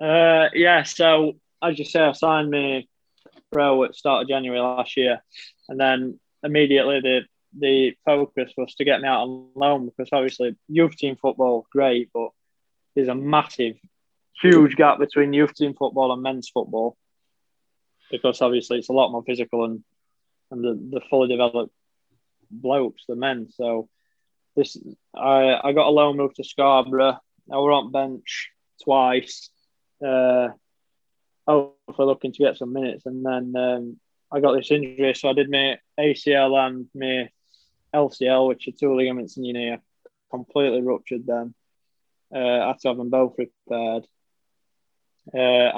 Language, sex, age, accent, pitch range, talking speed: English, male, 20-39, British, 125-145 Hz, 160 wpm